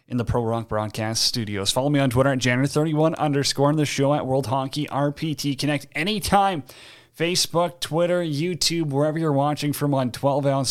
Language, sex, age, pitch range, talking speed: English, male, 30-49, 120-155 Hz, 180 wpm